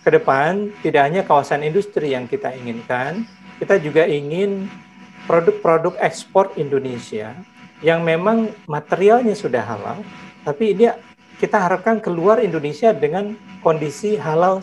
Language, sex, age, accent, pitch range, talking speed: Indonesian, male, 50-69, native, 150-215 Hz, 115 wpm